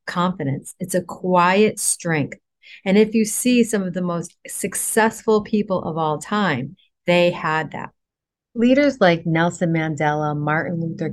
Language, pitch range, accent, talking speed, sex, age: English, 155-185 Hz, American, 140 wpm, female, 40-59